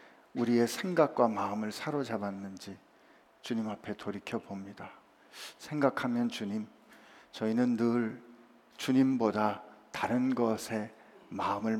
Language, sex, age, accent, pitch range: Korean, male, 50-69, native, 110-145 Hz